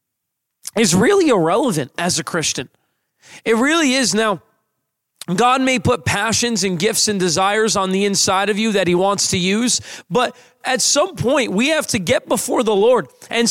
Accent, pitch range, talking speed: American, 200-250 Hz, 180 wpm